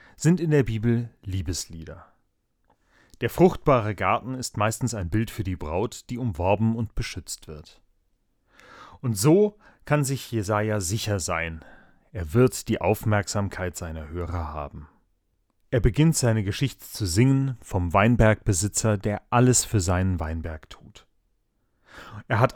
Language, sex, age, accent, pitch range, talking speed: German, male, 30-49, German, 95-130 Hz, 135 wpm